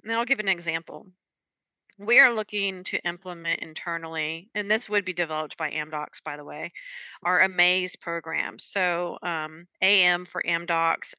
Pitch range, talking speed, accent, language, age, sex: 175-215 Hz, 155 wpm, American, English, 40-59, female